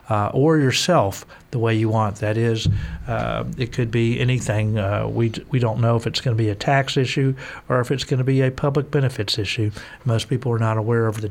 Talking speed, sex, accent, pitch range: 240 wpm, male, American, 110-135 Hz